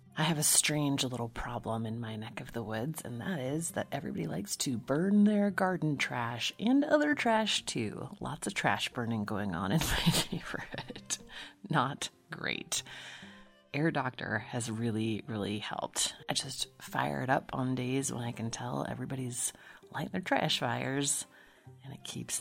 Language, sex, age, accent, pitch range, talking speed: English, female, 30-49, American, 115-160 Hz, 170 wpm